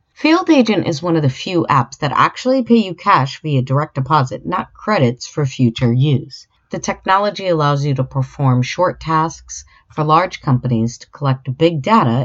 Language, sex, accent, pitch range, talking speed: English, female, American, 130-180 Hz, 175 wpm